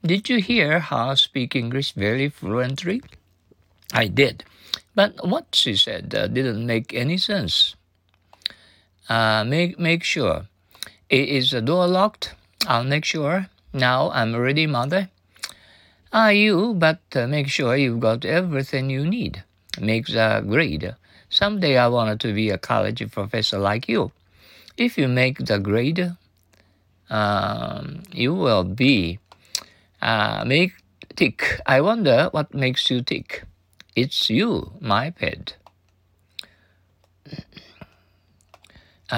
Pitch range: 105-160 Hz